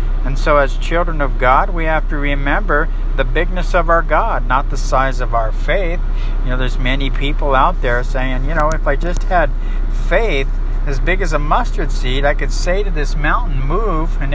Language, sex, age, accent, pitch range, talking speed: English, male, 50-69, American, 115-145 Hz, 210 wpm